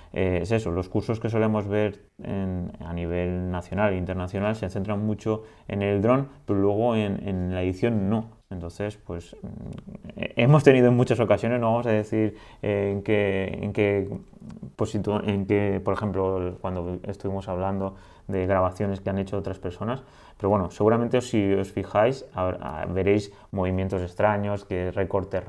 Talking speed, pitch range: 160 wpm, 95-110 Hz